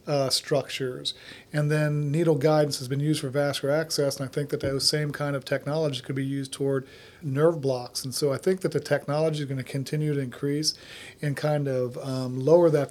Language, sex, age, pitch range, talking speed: English, male, 40-59, 135-155 Hz, 215 wpm